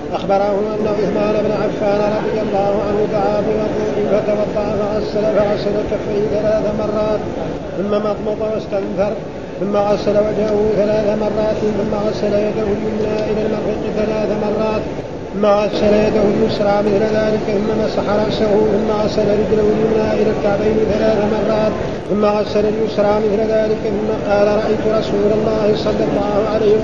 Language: Arabic